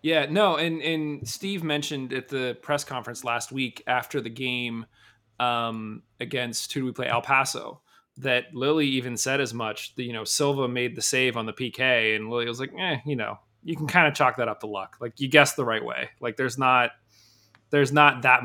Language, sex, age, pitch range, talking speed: English, male, 20-39, 120-155 Hz, 220 wpm